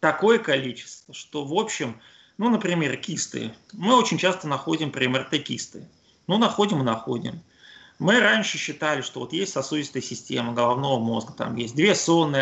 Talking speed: 160 wpm